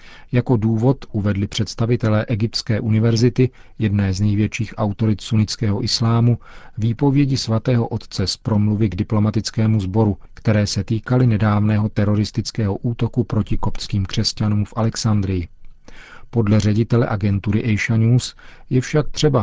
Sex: male